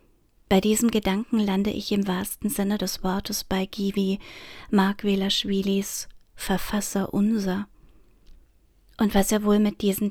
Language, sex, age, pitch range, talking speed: German, female, 30-49, 195-220 Hz, 130 wpm